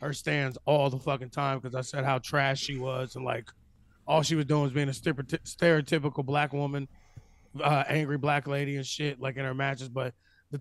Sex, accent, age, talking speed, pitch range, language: male, American, 20-39, 210 wpm, 145-180 Hz, English